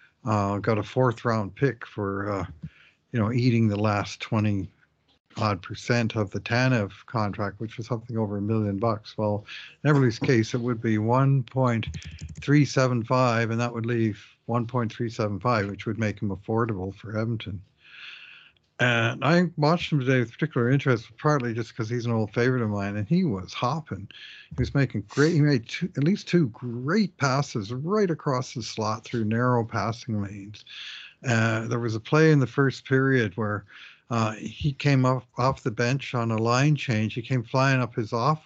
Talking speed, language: 180 wpm, English